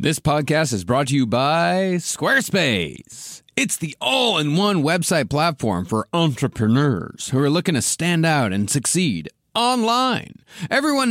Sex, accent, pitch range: male, American, 130-215 Hz